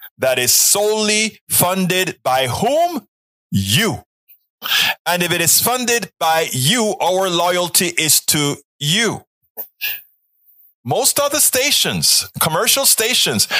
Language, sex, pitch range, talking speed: English, male, 170-215 Hz, 105 wpm